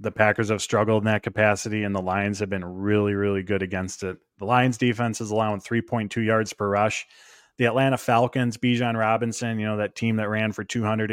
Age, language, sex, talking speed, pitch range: 20-39, English, male, 225 wpm, 100-120 Hz